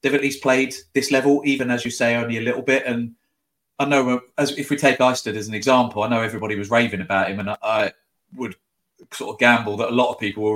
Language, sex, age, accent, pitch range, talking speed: English, male, 30-49, British, 105-125 Hz, 255 wpm